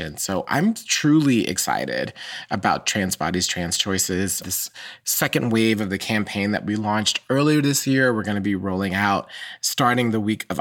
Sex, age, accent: male, 30-49, American